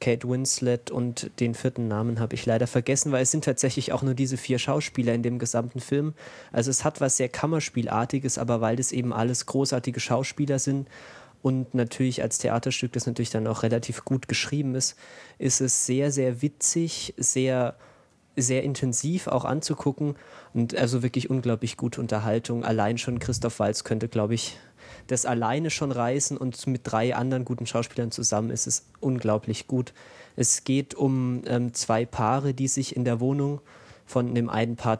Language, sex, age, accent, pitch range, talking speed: German, male, 20-39, German, 115-130 Hz, 175 wpm